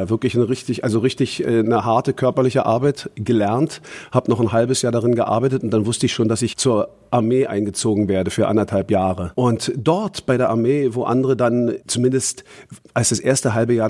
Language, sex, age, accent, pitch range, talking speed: German, male, 50-69, German, 105-130 Hz, 195 wpm